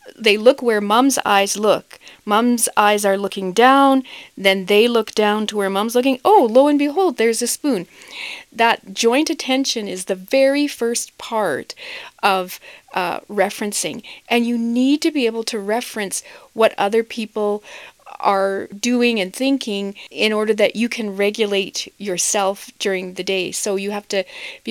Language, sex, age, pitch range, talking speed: English, female, 40-59, 200-245 Hz, 165 wpm